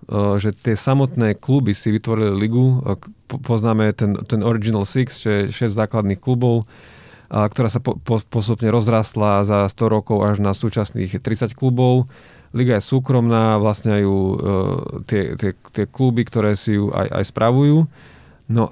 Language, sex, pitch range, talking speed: Slovak, male, 100-115 Hz, 145 wpm